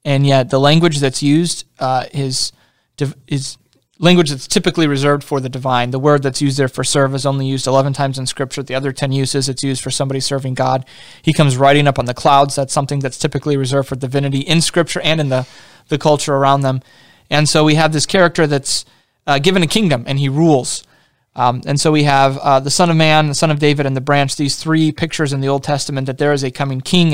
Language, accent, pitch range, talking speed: English, American, 135-155 Hz, 235 wpm